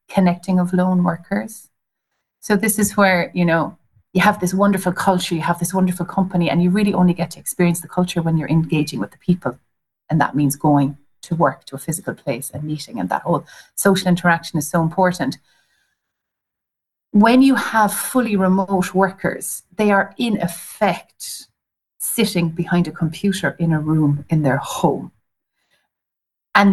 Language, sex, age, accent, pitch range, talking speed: English, female, 30-49, Irish, 160-190 Hz, 170 wpm